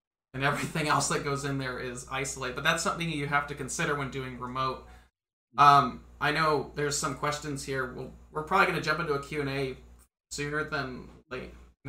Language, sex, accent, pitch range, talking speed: English, male, American, 130-150 Hz, 200 wpm